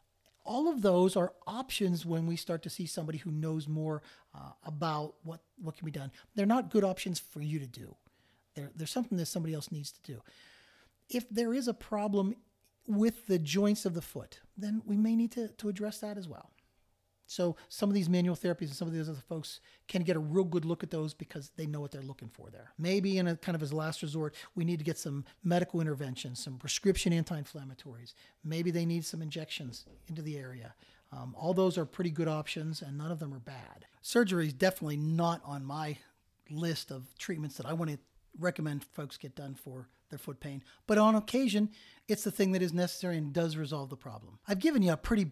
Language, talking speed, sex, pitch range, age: English, 220 wpm, male, 145-185 Hz, 40-59